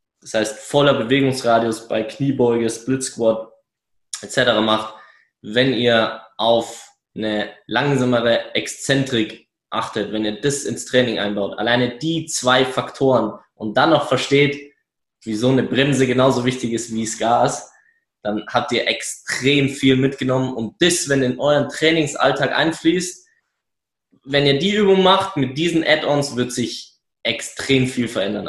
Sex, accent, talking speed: male, German, 135 wpm